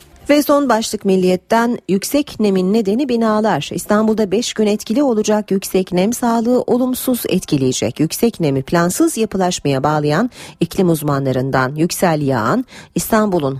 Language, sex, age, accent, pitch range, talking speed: Turkish, female, 40-59, native, 155-215 Hz, 125 wpm